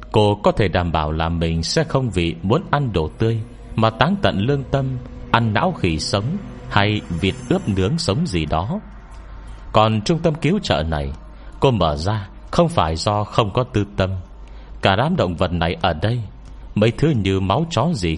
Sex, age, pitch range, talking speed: male, 30-49, 85-125 Hz, 195 wpm